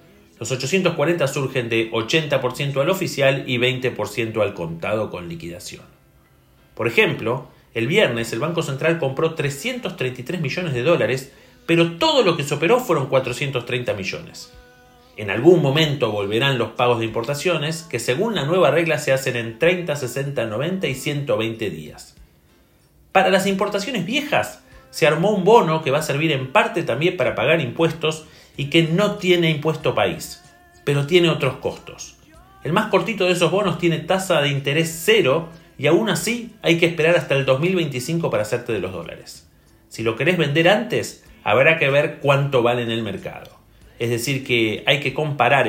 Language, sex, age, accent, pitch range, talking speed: Spanish, male, 40-59, Argentinian, 120-170 Hz, 170 wpm